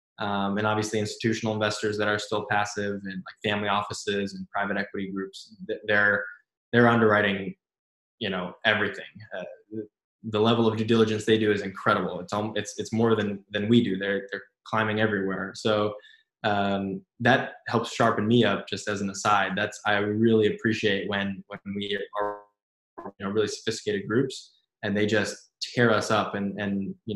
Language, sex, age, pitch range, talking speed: English, male, 20-39, 105-120 Hz, 170 wpm